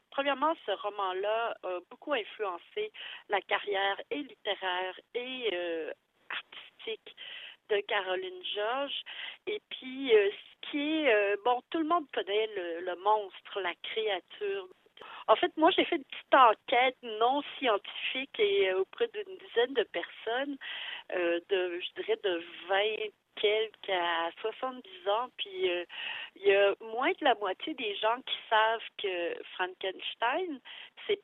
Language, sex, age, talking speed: French, female, 40-59, 145 wpm